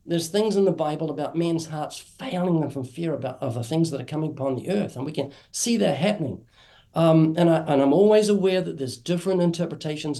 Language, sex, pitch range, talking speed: English, male, 135-175 Hz, 240 wpm